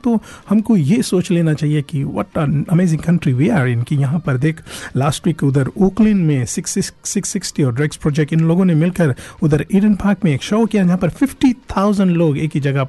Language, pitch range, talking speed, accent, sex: Hindi, 140-185 Hz, 185 wpm, native, male